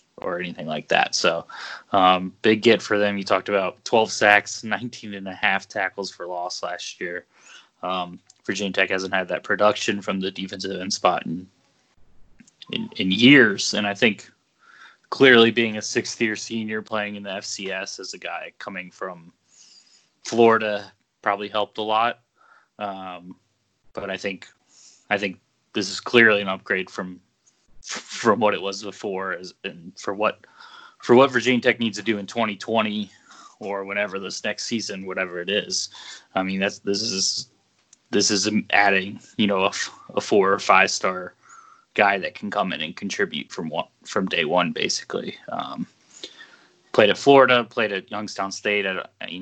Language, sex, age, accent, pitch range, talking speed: English, male, 20-39, American, 95-110 Hz, 170 wpm